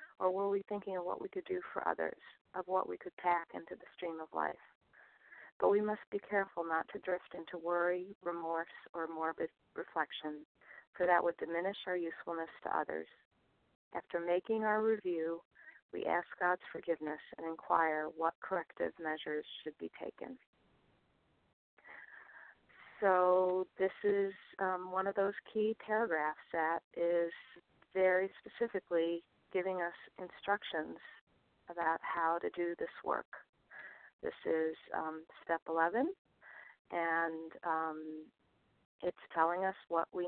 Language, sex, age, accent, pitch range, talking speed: English, female, 40-59, American, 160-185 Hz, 140 wpm